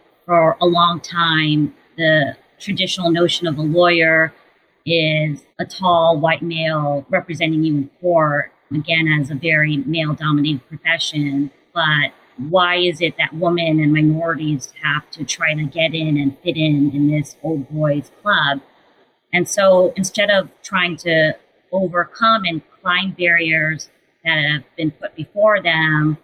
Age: 40-59